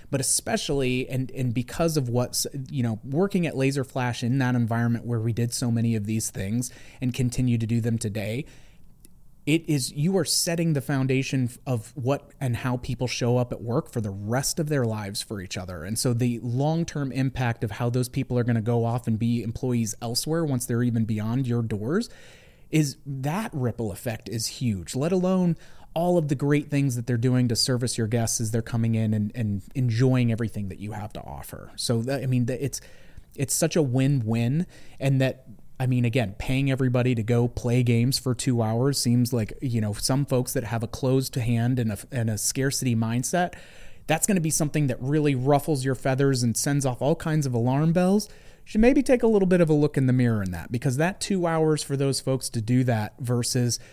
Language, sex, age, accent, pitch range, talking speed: English, male, 30-49, American, 120-145 Hz, 220 wpm